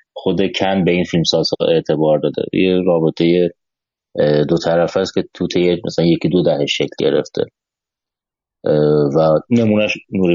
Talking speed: 140 wpm